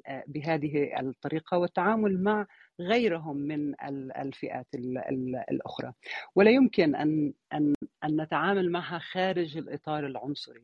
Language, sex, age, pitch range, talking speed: Arabic, female, 40-59, 145-175 Hz, 95 wpm